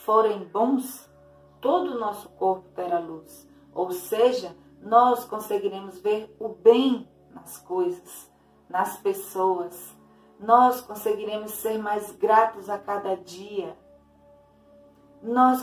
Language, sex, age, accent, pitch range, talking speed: Portuguese, female, 40-59, Brazilian, 195-245 Hz, 110 wpm